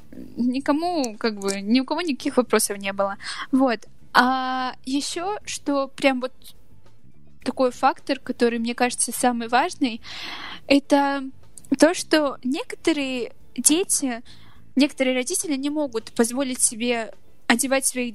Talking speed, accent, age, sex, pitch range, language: 120 wpm, native, 10-29, female, 240-310 Hz, Russian